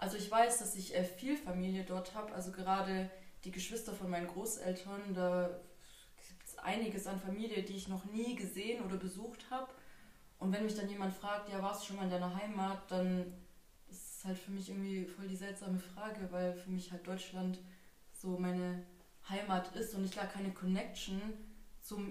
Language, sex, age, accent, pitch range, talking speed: German, female, 20-39, German, 185-215 Hz, 190 wpm